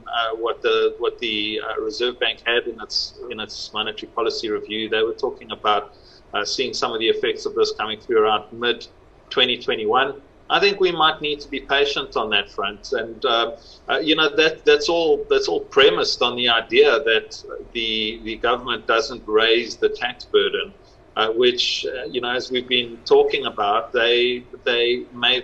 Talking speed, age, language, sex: 190 wpm, 40-59, English, male